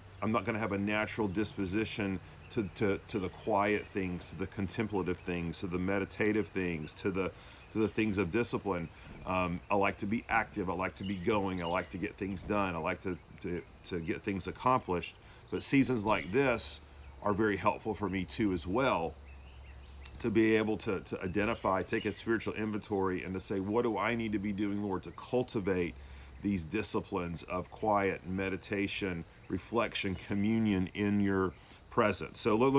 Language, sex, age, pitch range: English, male, 40-59, 90-110 Hz